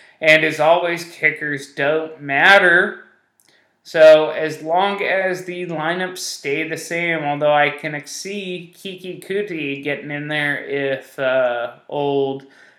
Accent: American